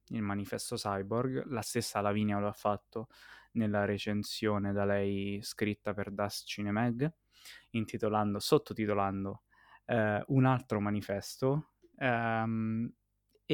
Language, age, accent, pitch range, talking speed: Italian, 20-39, native, 105-120 Hz, 115 wpm